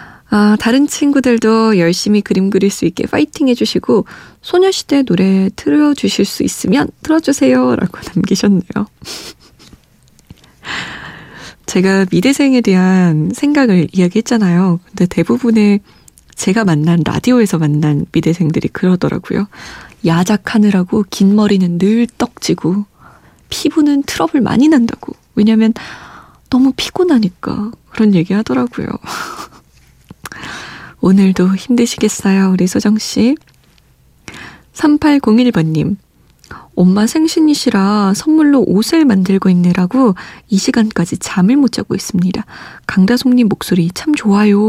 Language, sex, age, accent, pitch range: Korean, female, 20-39, native, 185-255 Hz